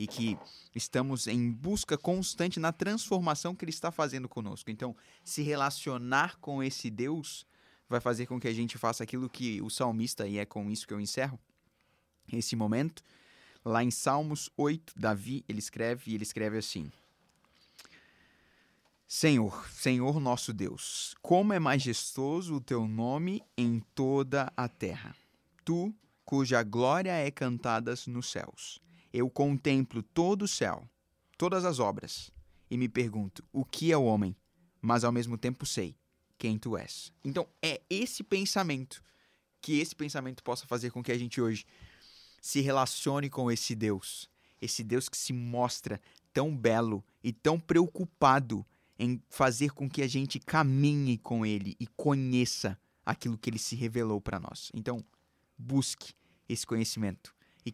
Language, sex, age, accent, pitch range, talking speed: Portuguese, male, 20-39, Brazilian, 115-145 Hz, 150 wpm